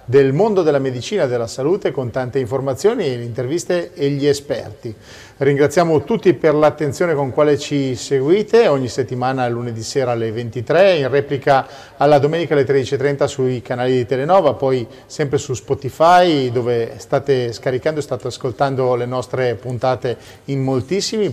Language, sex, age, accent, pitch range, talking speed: Italian, male, 40-59, native, 125-145 Hz, 150 wpm